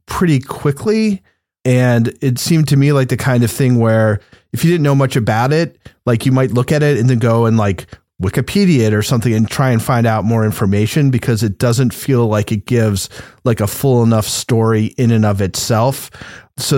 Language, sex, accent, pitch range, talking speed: English, male, American, 110-140 Hz, 210 wpm